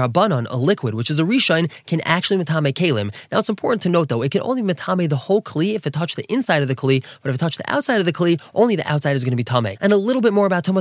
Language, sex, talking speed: English, male, 315 wpm